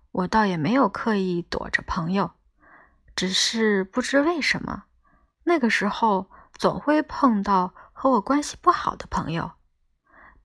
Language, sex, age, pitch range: Chinese, female, 20-39, 190-255 Hz